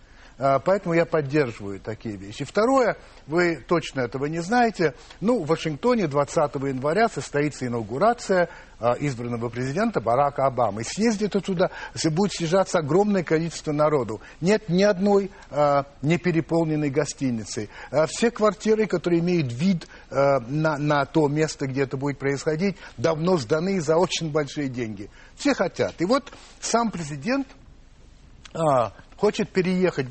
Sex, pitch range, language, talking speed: male, 140-190 Hz, Russian, 130 wpm